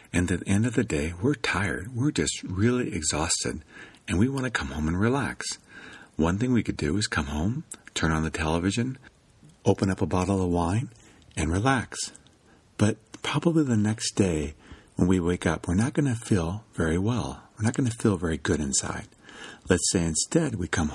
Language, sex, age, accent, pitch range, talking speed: English, male, 50-69, American, 85-115 Hz, 200 wpm